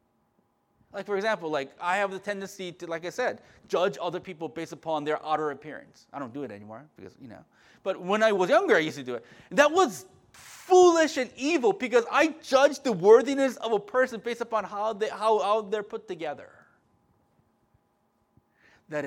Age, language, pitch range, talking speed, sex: 30-49, English, 155-220 Hz, 190 wpm, male